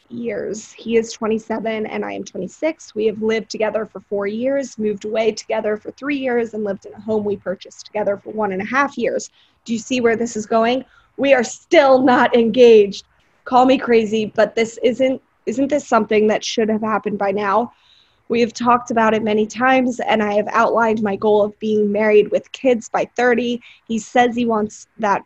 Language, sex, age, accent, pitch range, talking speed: English, female, 20-39, American, 210-245 Hz, 205 wpm